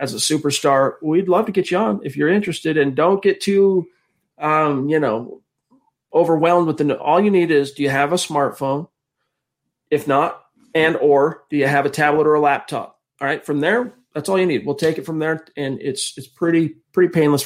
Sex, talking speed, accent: male, 220 wpm, American